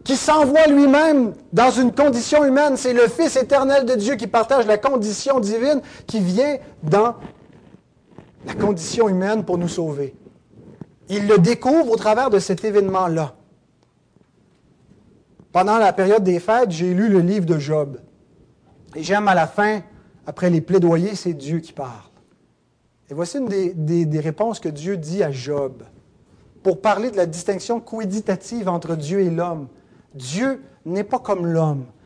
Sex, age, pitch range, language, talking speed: male, 40-59, 175-240 Hz, French, 160 wpm